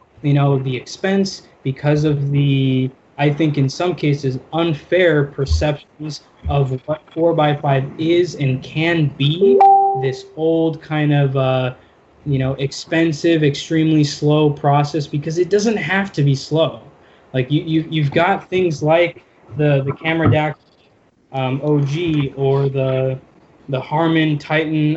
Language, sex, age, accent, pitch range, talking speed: English, male, 20-39, American, 135-160 Hz, 135 wpm